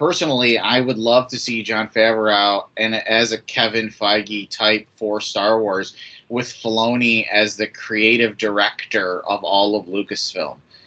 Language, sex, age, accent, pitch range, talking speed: English, male, 30-49, American, 110-130 Hz, 150 wpm